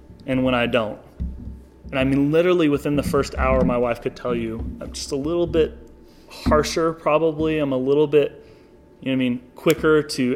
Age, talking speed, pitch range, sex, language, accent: 30-49, 205 wpm, 125-155 Hz, male, English, American